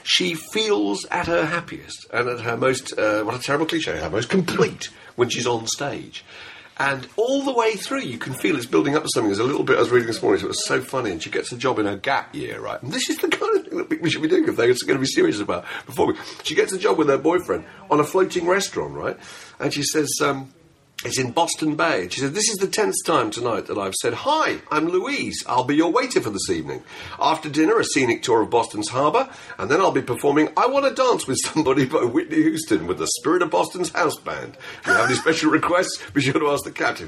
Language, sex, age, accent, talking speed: English, male, 50-69, British, 260 wpm